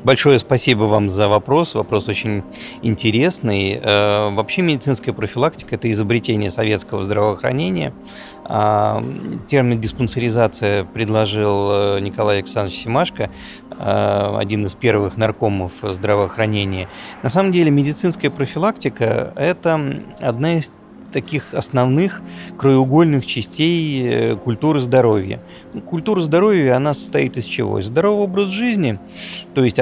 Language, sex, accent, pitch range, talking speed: Russian, male, native, 105-145 Hz, 105 wpm